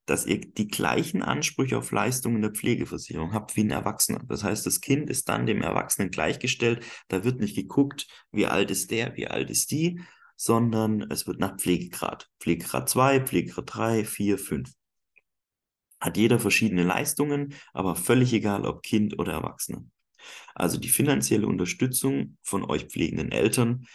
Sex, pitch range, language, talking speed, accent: male, 85-115 Hz, German, 160 wpm, German